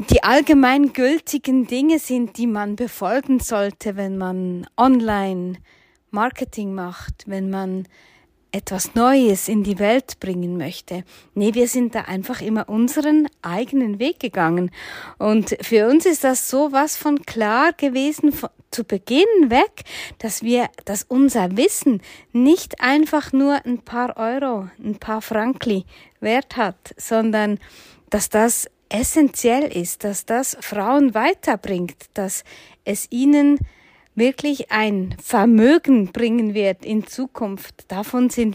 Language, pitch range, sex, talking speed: German, 205-260 Hz, female, 125 wpm